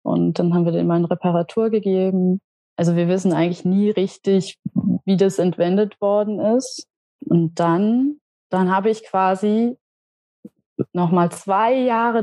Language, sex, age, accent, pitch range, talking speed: German, female, 20-39, German, 175-210 Hz, 140 wpm